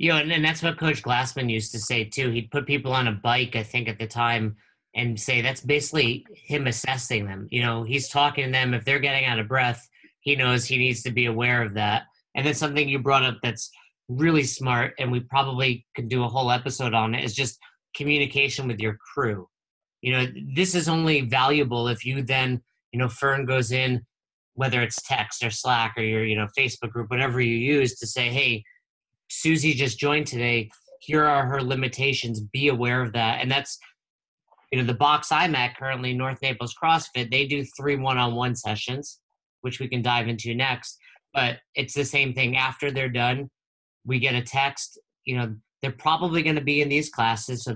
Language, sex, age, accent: English, male, 30-49, American